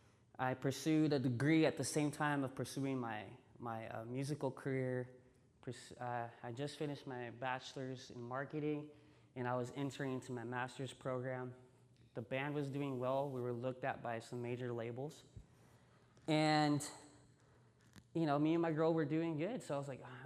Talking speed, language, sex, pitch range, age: 175 wpm, English, male, 125-165 Hz, 20-39